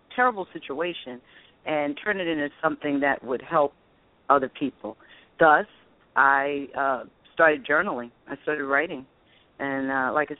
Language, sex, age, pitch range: English, female, 40-59, 140-175 Hz